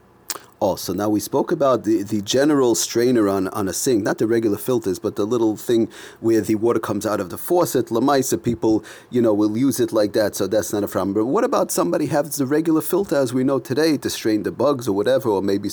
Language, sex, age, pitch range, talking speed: English, male, 30-49, 110-145 Hz, 250 wpm